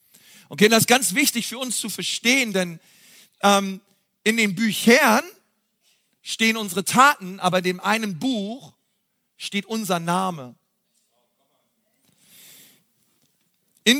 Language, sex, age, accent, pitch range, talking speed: German, male, 40-59, German, 195-240 Hz, 110 wpm